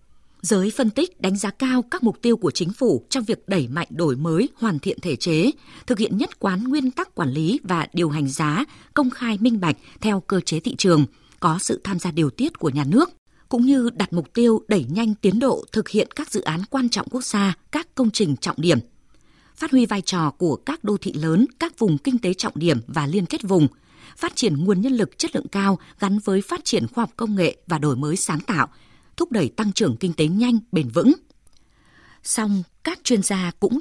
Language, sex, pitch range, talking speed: Vietnamese, female, 175-250 Hz, 230 wpm